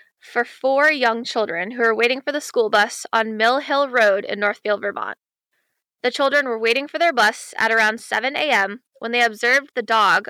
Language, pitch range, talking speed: English, 215-260 Hz, 200 wpm